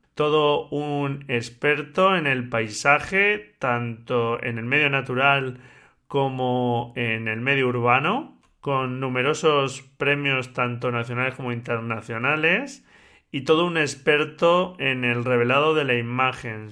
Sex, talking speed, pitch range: male, 120 wpm, 125-155 Hz